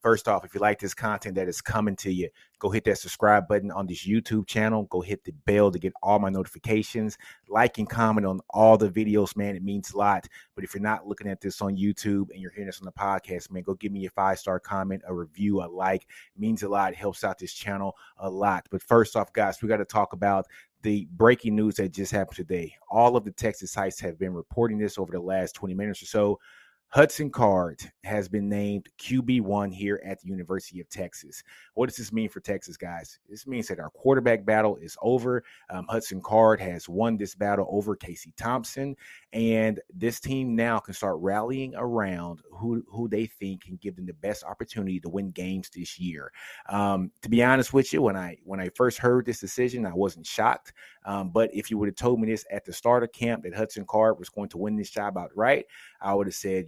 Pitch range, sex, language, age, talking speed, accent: 95-110 Hz, male, English, 30-49, 230 wpm, American